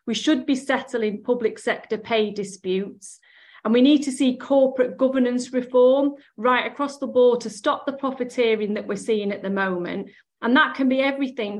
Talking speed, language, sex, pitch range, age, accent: 180 wpm, English, female, 210-250 Hz, 30-49, British